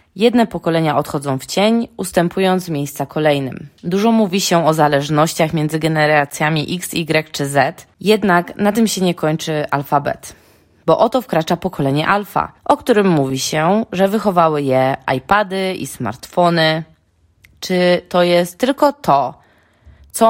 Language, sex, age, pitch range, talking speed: Polish, female, 20-39, 145-195 Hz, 140 wpm